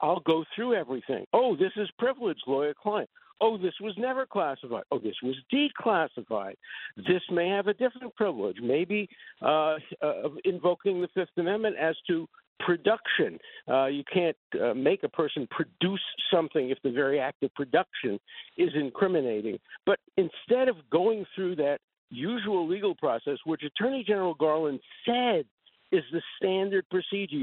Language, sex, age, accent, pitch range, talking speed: English, male, 50-69, American, 160-230 Hz, 150 wpm